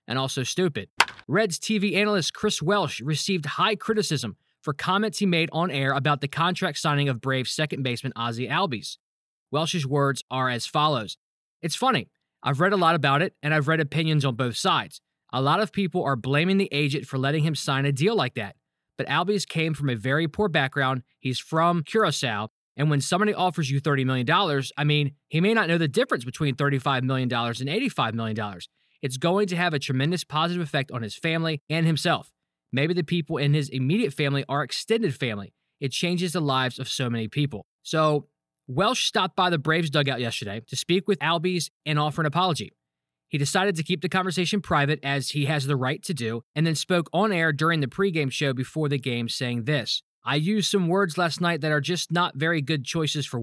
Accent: American